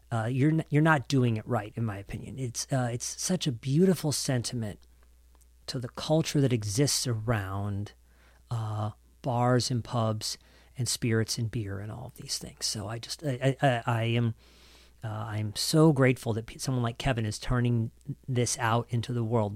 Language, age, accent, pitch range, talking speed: English, 40-59, American, 110-140 Hz, 180 wpm